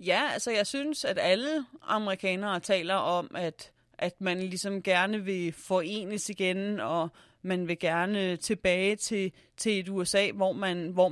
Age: 30-49